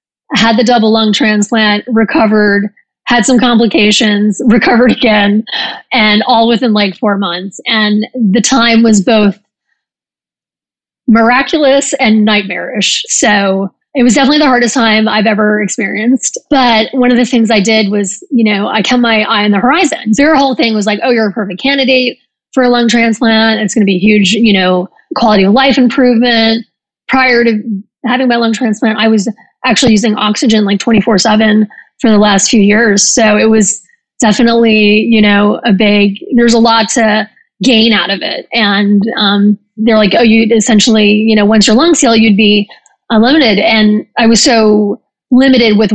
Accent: American